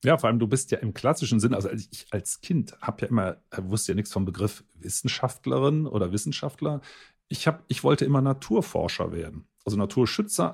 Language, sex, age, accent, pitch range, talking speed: German, male, 40-59, German, 105-140 Hz, 190 wpm